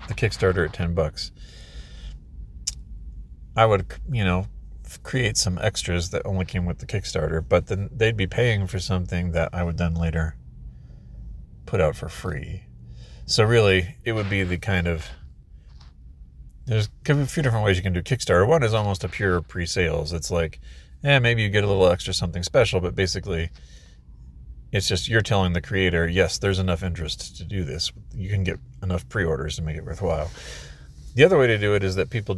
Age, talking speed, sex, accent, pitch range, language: 30-49, 185 wpm, male, American, 70-100 Hz, English